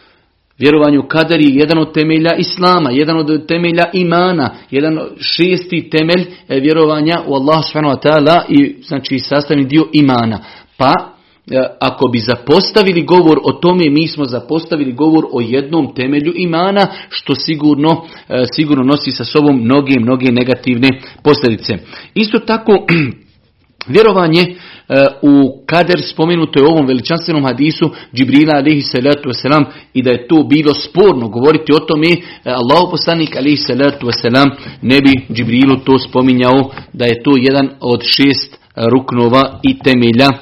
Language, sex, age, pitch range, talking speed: Croatian, male, 40-59, 135-170 Hz, 135 wpm